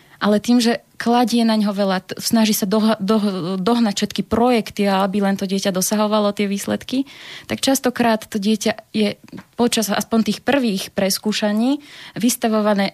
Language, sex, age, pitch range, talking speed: Slovak, female, 20-39, 195-225 Hz, 160 wpm